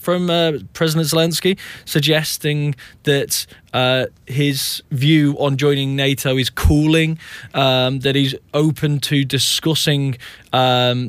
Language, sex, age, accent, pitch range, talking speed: English, male, 20-39, British, 120-140 Hz, 115 wpm